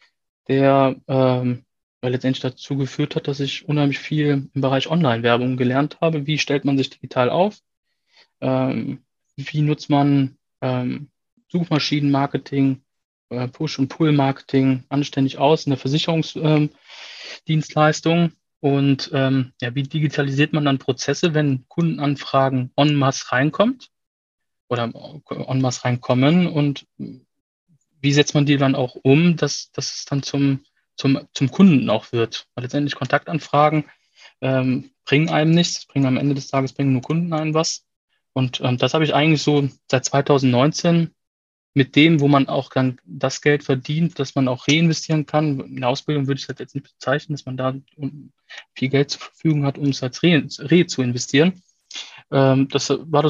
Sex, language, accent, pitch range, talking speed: male, German, German, 130-150 Hz, 155 wpm